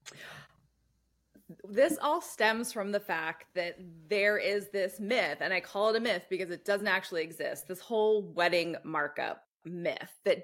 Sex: female